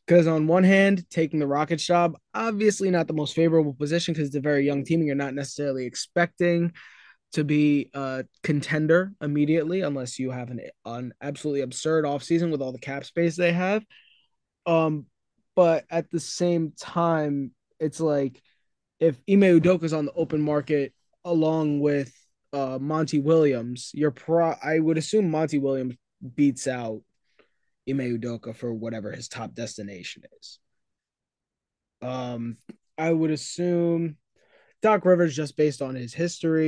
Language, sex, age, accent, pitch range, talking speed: English, male, 20-39, American, 135-165 Hz, 155 wpm